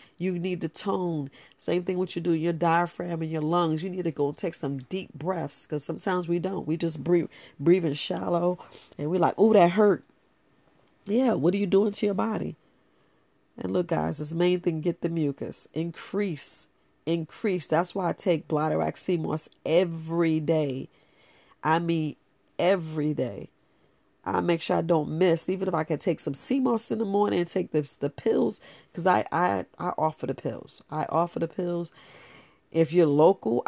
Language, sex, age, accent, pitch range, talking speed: English, female, 40-59, American, 150-180 Hz, 185 wpm